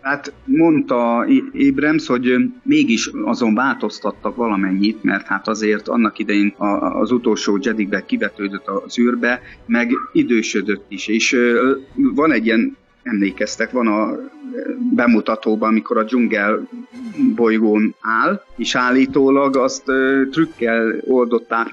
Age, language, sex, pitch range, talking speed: 30-49, Hungarian, male, 105-145 Hz, 110 wpm